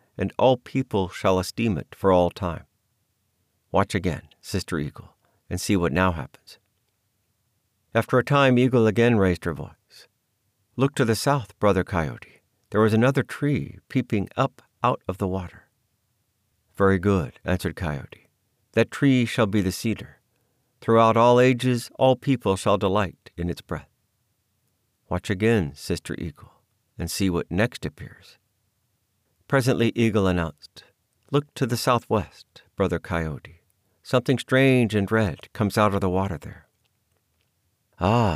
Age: 60-79